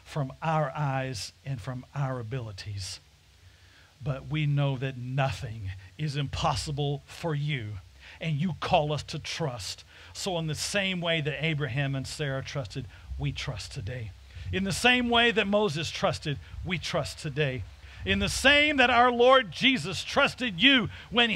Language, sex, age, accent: English, male, 50-69, American